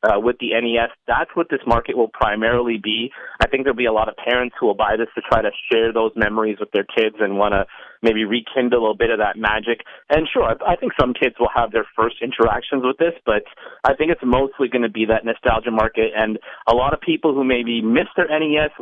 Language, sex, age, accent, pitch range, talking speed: English, male, 30-49, American, 110-125 Hz, 250 wpm